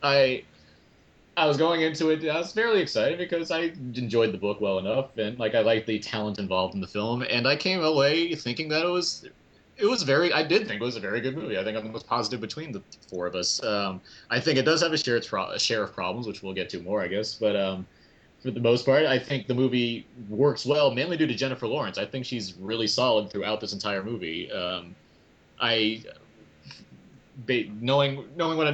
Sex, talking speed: male, 235 wpm